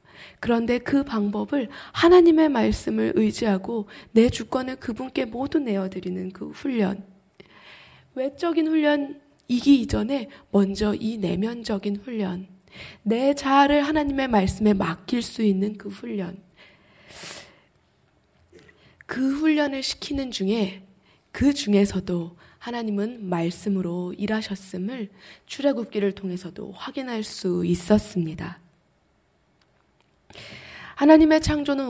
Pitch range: 190-260 Hz